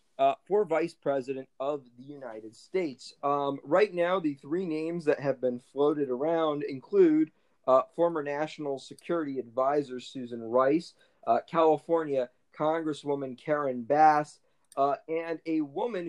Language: English